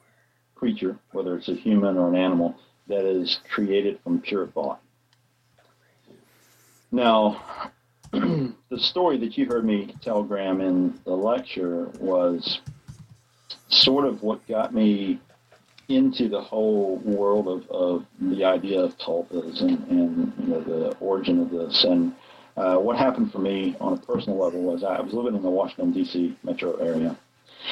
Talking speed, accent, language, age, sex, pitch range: 150 wpm, American, English, 50-69, male, 100-140 Hz